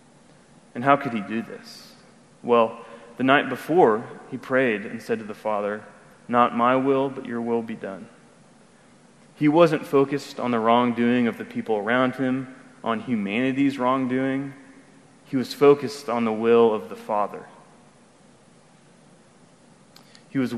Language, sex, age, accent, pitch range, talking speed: English, male, 30-49, American, 115-135 Hz, 145 wpm